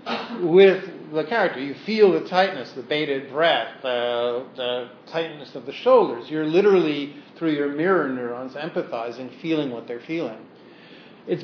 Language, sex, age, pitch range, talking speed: English, male, 50-69, 130-160 Hz, 145 wpm